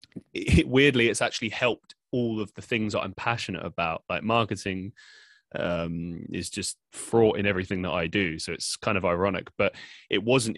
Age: 20-39